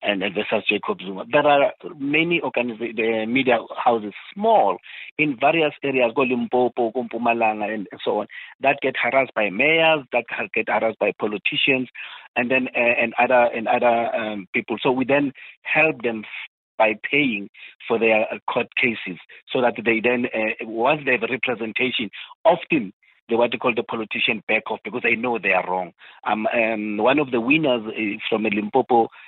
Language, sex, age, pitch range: English, male, 50-69, 110-135 Hz